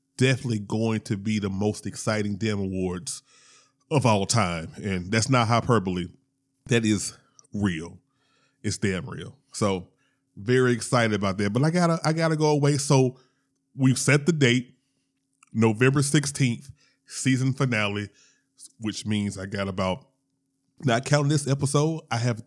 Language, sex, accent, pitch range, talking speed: English, male, American, 100-135 Hz, 145 wpm